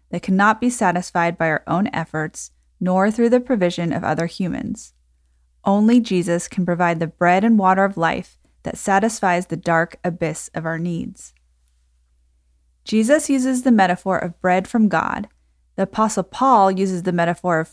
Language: English